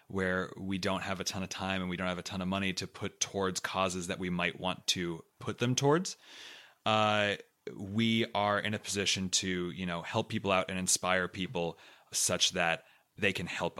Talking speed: 210 wpm